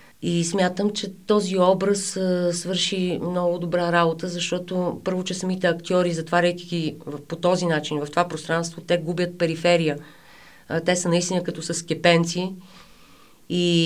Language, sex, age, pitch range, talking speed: Bulgarian, female, 30-49, 155-180 Hz, 145 wpm